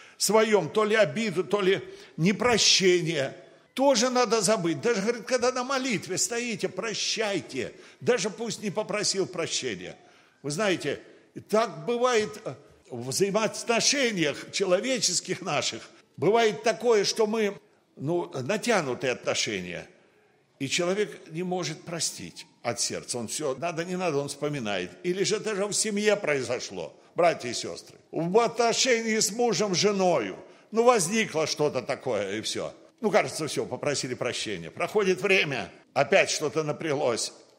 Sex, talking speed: male, 130 wpm